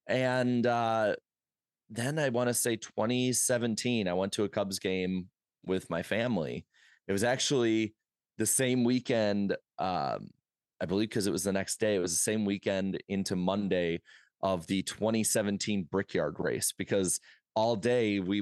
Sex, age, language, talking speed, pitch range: male, 20-39, English, 155 wpm, 95-125 Hz